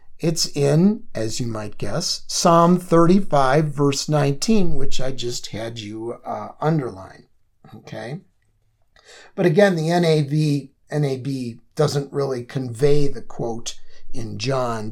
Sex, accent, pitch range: male, American, 110-165 Hz